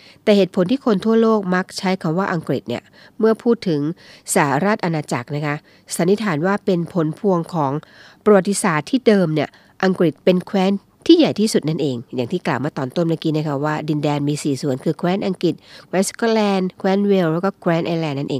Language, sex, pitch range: Thai, female, 155-200 Hz